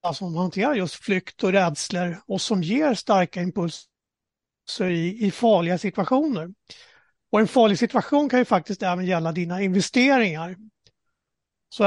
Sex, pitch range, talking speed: male, 180-220 Hz, 135 wpm